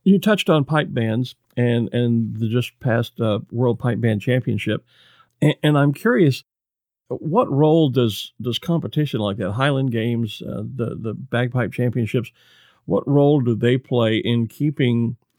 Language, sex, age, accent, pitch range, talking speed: English, male, 50-69, American, 115-145 Hz, 155 wpm